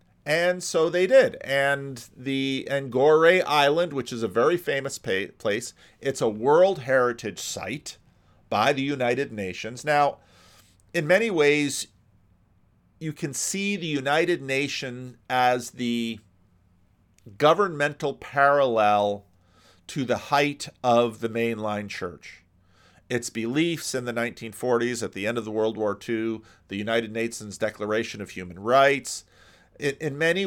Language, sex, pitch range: English, male, 105-140 Hz